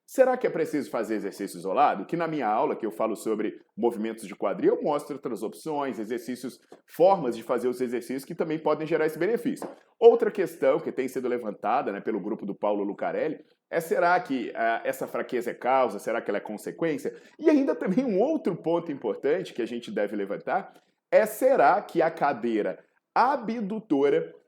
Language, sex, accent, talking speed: Portuguese, male, Brazilian, 190 wpm